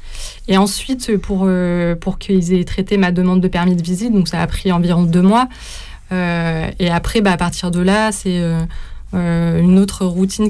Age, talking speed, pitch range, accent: 20-39, 200 wpm, 170-195 Hz, French